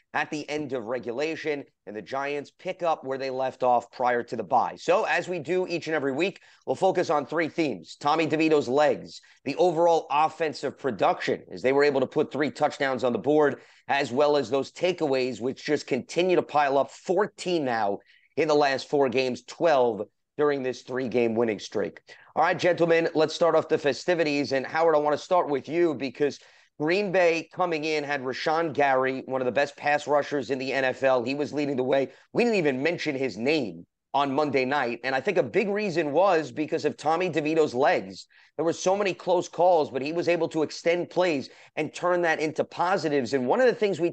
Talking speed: 210 wpm